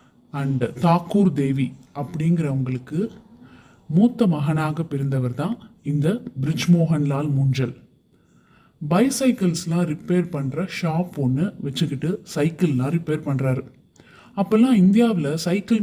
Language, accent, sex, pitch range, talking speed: Tamil, native, male, 140-185 Hz, 80 wpm